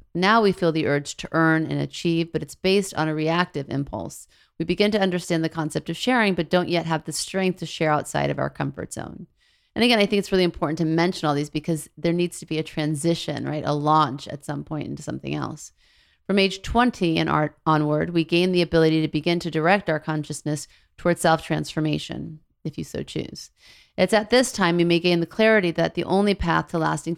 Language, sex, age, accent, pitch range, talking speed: English, female, 30-49, American, 155-180 Hz, 225 wpm